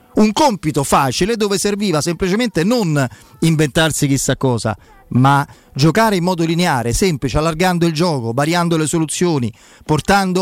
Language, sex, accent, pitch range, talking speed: Italian, male, native, 140-200 Hz, 130 wpm